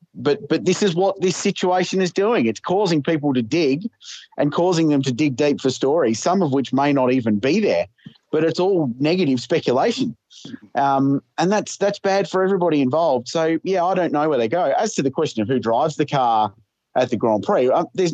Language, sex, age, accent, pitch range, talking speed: English, male, 30-49, Australian, 120-155 Hz, 220 wpm